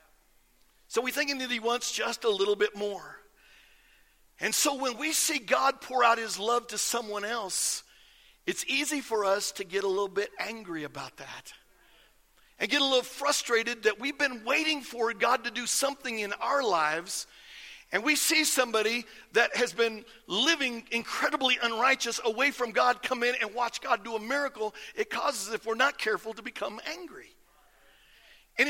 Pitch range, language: 225-295 Hz, English